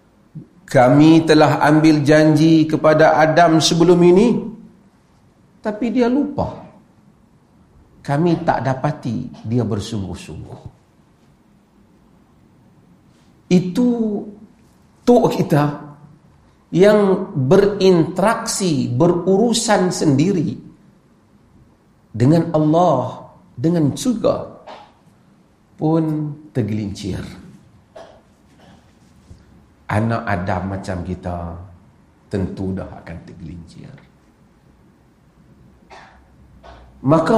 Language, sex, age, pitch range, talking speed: Malay, male, 50-69, 130-195 Hz, 60 wpm